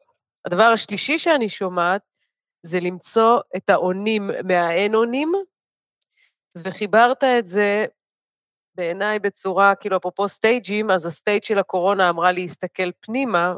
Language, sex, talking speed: Hebrew, female, 110 wpm